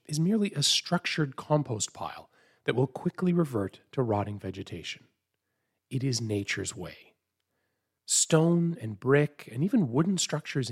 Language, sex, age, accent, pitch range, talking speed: English, male, 30-49, American, 115-165 Hz, 135 wpm